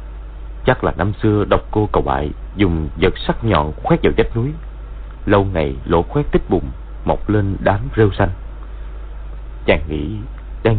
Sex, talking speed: male, 165 wpm